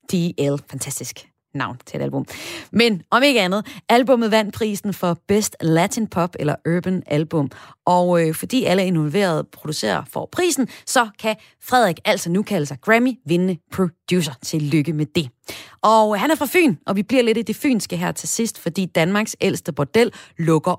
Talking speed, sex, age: 180 wpm, female, 30-49